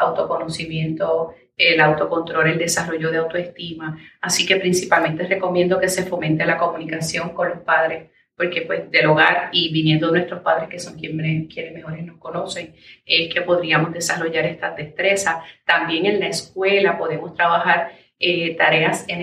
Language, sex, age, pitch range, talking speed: English, female, 30-49, 165-195 Hz, 155 wpm